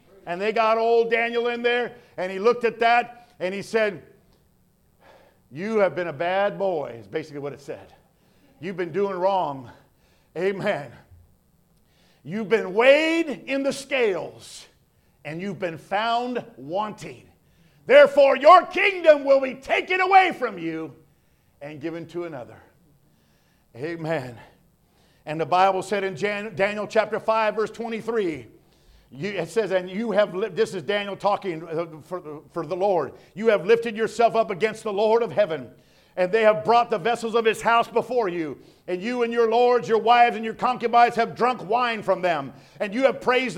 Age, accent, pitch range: 50-69, American, 185-260 Hz